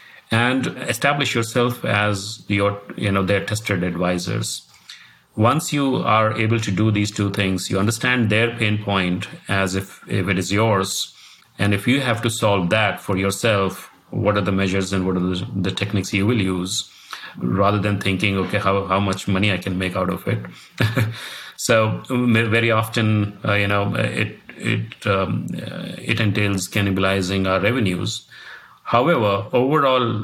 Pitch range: 95-110 Hz